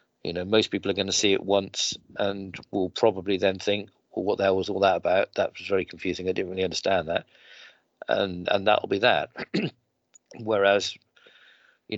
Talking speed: 200 wpm